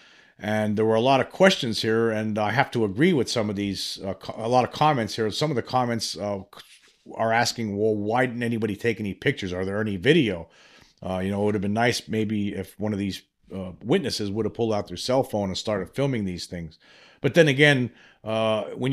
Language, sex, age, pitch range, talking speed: English, male, 40-59, 100-120 Hz, 230 wpm